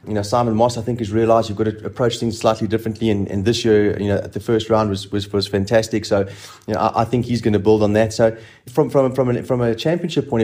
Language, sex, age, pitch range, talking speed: English, male, 30-49, 105-120 Hz, 280 wpm